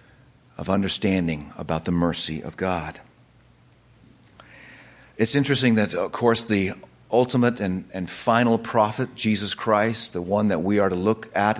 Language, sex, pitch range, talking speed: English, male, 95-120 Hz, 145 wpm